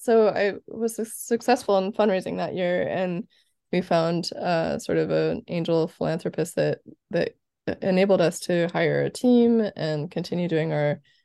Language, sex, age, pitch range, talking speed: English, female, 20-39, 170-200 Hz, 155 wpm